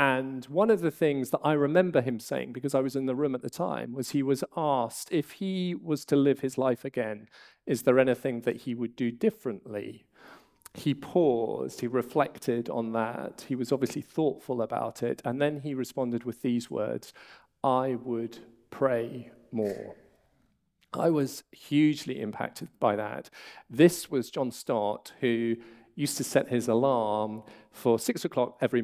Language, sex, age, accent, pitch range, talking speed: English, male, 40-59, British, 115-140 Hz, 170 wpm